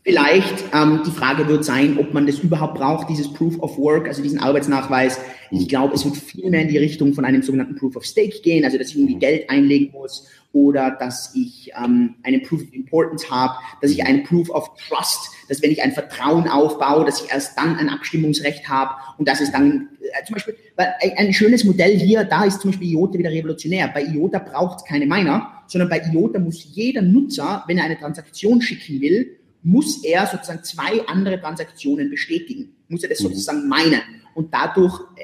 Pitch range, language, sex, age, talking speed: 150-200 Hz, German, male, 30-49, 205 wpm